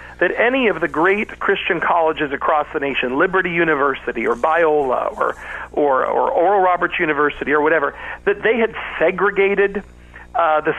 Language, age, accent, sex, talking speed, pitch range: English, 40-59, American, male, 155 wpm, 150-210 Hz